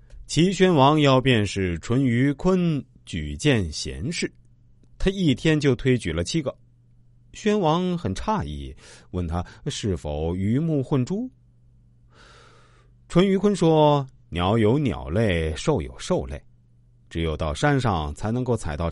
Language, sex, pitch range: Chinese, male, 85-125 Hz